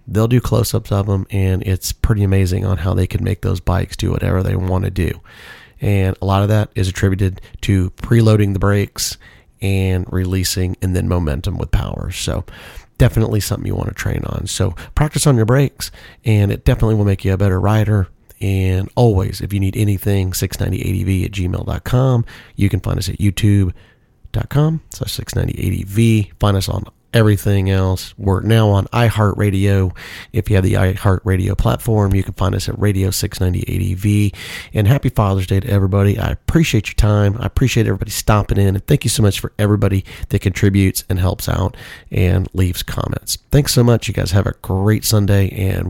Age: 30-49